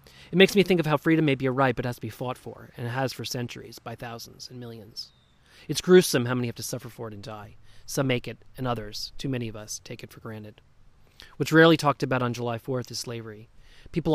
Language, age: English, 30-49